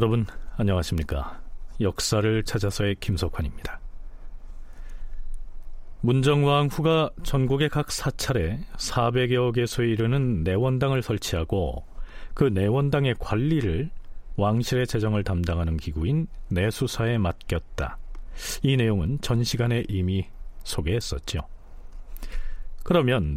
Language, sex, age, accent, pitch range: Korean, male, 40-59, native, 85-135 Hz